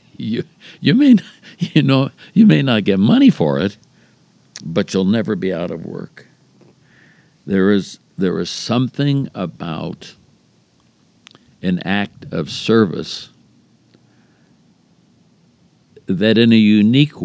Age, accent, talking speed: 60-79, American, 115 wpm